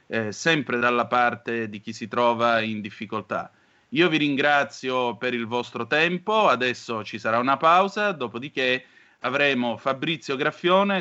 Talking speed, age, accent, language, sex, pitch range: 140 wpm, 30-49, native, Italian, male, 115-150 Hz